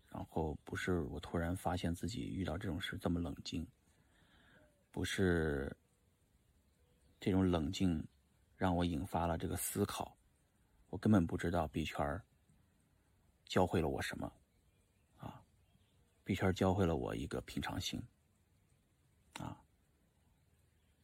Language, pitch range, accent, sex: Chinese, 80-100 Hz, native, male